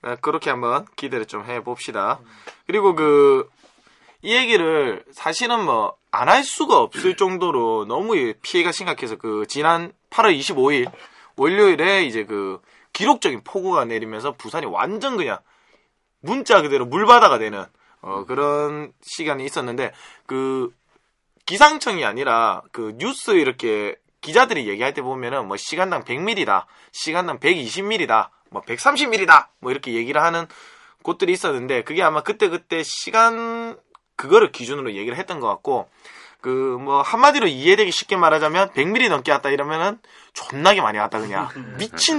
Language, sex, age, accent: Korean, male, 20-39, native